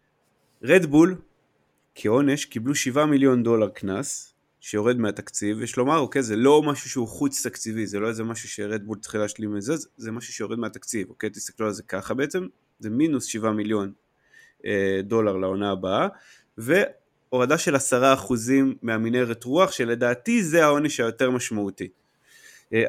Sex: male